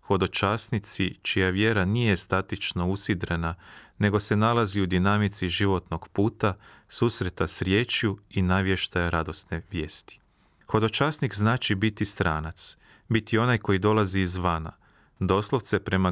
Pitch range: 90-110 Hz